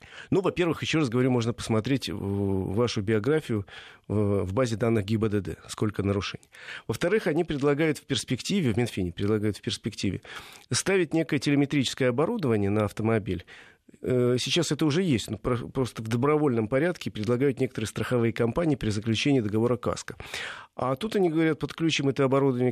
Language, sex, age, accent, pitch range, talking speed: Russian, male, 40-59, native, 110-145 Hz, 145 wpm